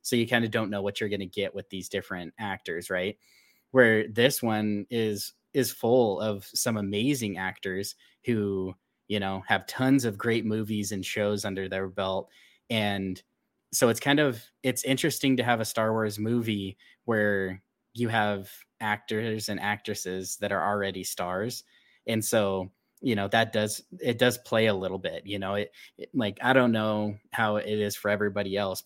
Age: 10-29